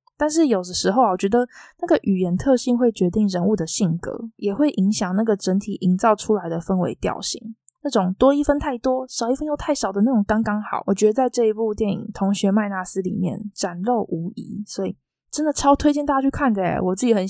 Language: Chinese